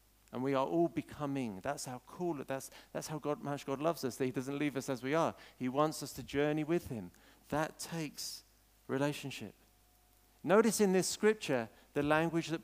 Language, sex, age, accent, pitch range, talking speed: English, male, 50-69, British, 120-170 Hz, 200 wpm